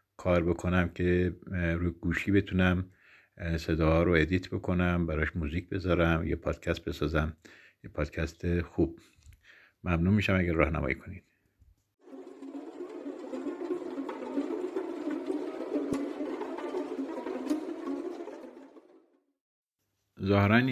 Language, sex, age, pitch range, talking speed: Persian, male, 50-69, 85-120 Hz, 70 wpm